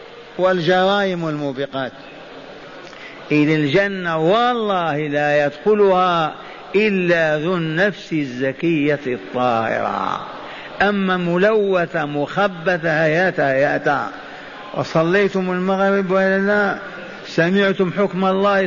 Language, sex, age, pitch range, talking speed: Arabic, male, 50-69, 170-200 Hz, 75 wpm